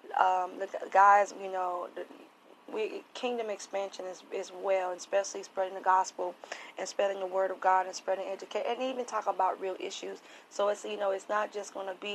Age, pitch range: 20-39, 185-195 Hz